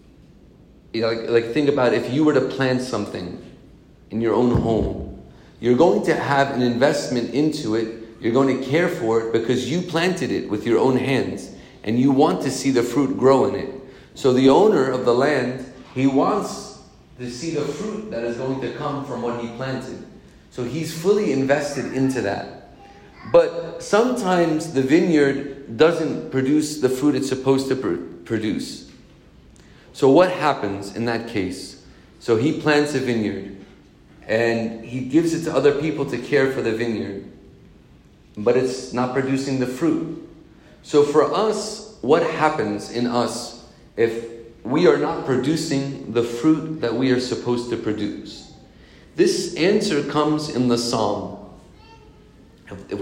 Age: 40-59